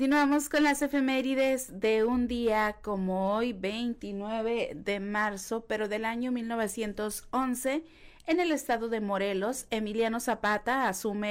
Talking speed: 125 wpm